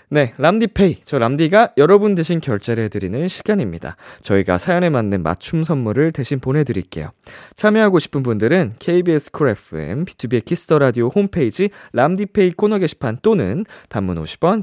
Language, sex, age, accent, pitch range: Korean, male, 20-39, native, 105-170 Hz